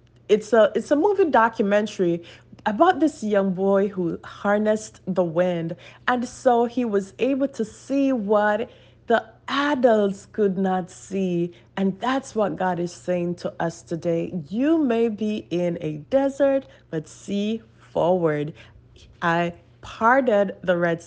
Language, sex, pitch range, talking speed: English, female, 160-225 Hz, 135 wpm